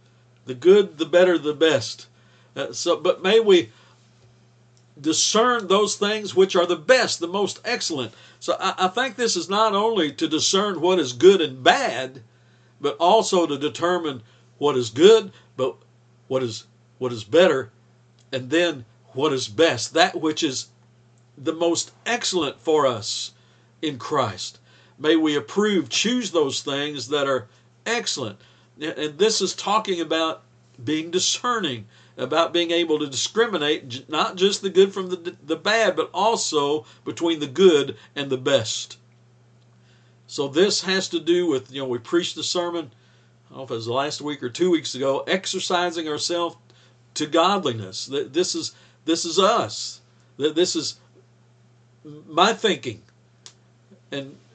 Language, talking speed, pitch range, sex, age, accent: English, 155 wpm, 120-175 Hz, male, 60-79, American